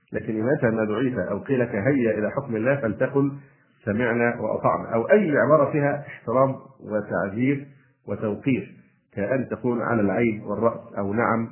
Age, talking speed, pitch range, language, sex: 50-69, 140 wpm, 110-140 Hz, Arabic, male